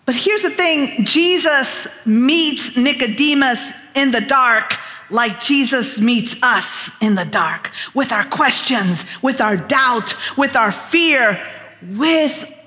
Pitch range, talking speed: 200-295 Hz, 130 wpm